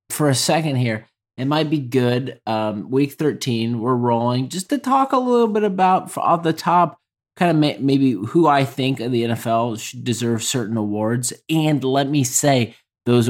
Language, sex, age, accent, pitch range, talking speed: English, male, 30-49, American, 105-130 Hz, 180 wpm